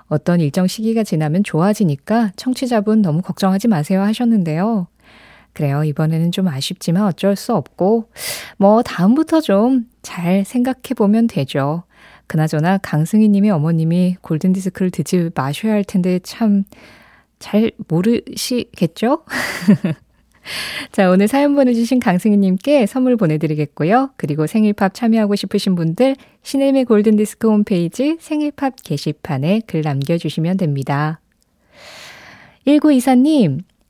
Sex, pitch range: female, 165-230 Hz